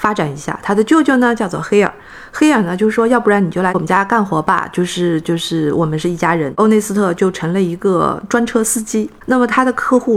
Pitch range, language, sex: 180-230 Hz, Chinese, female